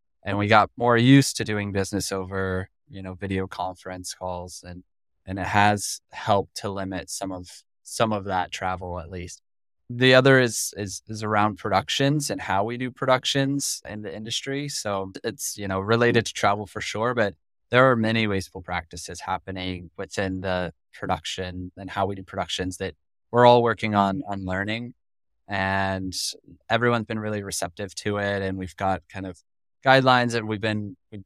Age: 20-39